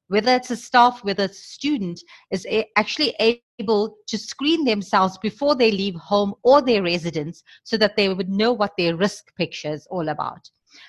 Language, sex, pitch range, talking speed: English, female, 180-230 Hz, 180 wpm